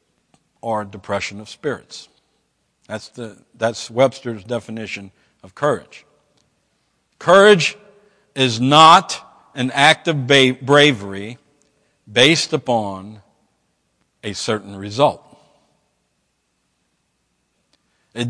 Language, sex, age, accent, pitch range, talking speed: English, male, 60-79, American, 105-145 Hz, 80 wpm